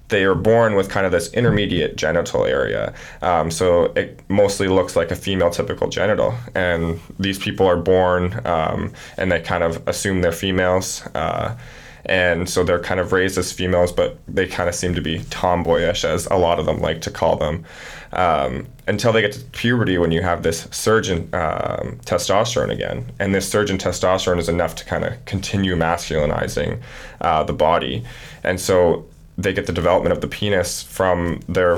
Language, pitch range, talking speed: English, 85-95 Hz, 190 wpm